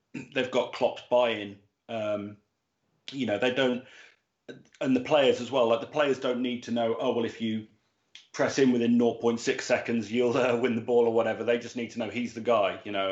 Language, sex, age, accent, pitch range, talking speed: English, male, 30-49, British, 110-120 Hz, 220 wpm